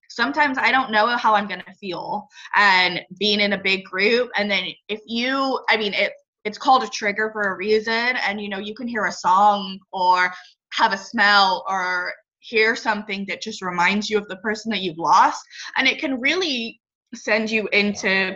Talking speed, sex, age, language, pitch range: 200 wpm, female, 20-39, English, 190-225 Hz